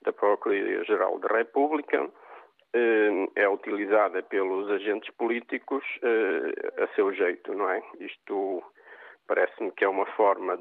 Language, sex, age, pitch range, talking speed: Portuguese, male, 50-69, 345-440 Hz, 120 wpm